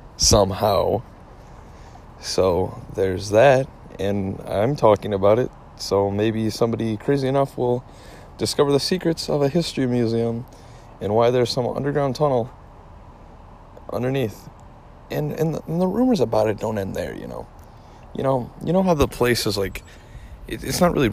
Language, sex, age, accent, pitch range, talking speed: English, male, 20-39, American, 105-130 Hz, 155 wpm